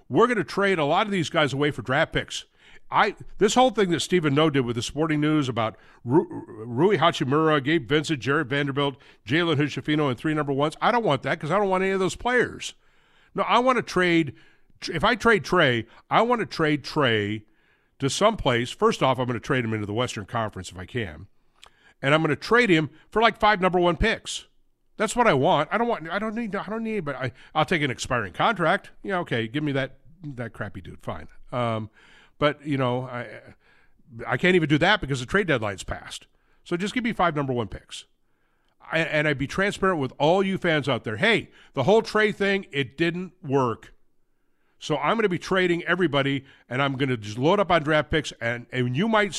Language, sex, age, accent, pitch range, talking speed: English, male, 50-69, American, 125-180 Hz, 225 wpm